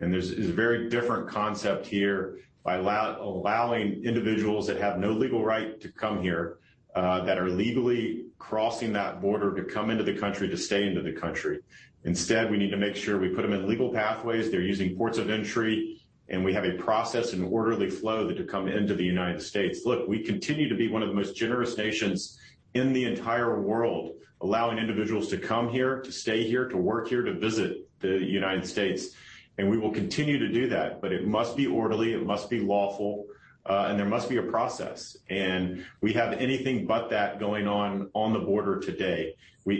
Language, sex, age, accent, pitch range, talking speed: English, male, 40-59, American, 100-115 Hz, 200 wpm